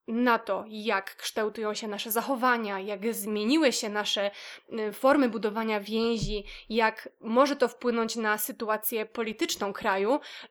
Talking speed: 125 wpm